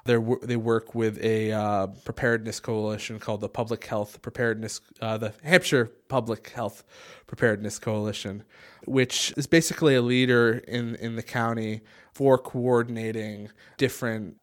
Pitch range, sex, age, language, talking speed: 110-130 Hz, male, 20-39, English, 135 wpm